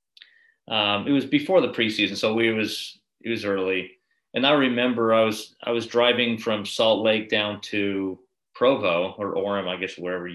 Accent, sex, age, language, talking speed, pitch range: American, male, 40-59, English, 180 wpm, 95-120 Hz